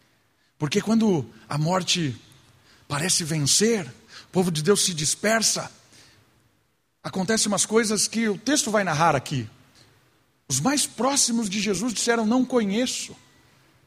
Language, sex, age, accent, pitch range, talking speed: Portuguese, male, 50-69, Brazilian, 135-215 Hz, 125 wpm